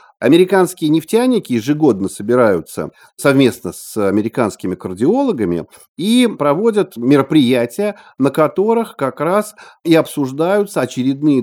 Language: Russian